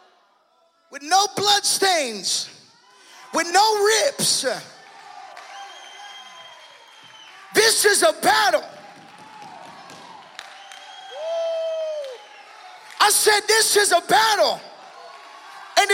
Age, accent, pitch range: 30-49, American, 295-395 Hz